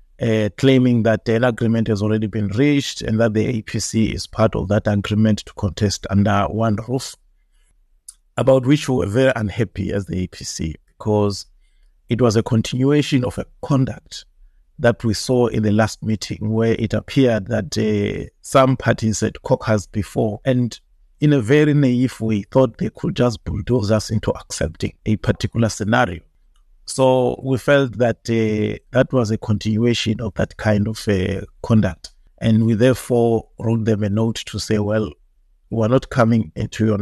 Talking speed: 170 wpm